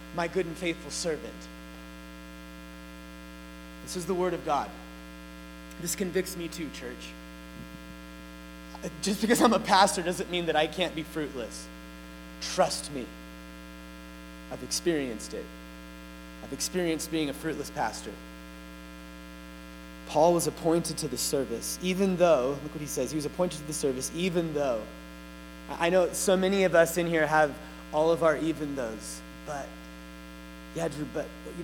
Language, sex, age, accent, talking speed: English, male, 30-49, American, 150 wpm